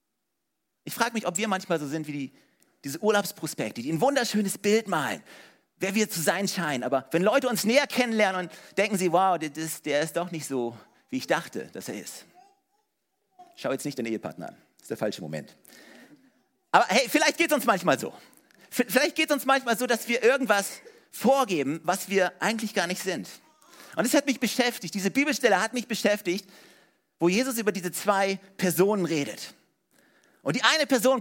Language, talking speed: German, 190 wpm